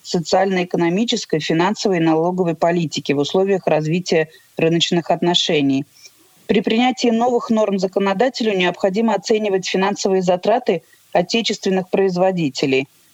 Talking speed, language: 95 wpm, Russian